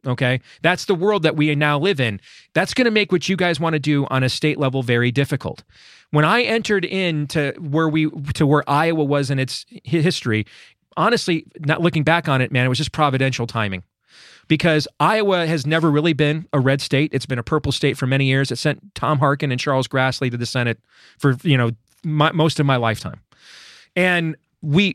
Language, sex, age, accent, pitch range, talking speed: English, male, 30-49, American, 130-165 Hz, 210 wpm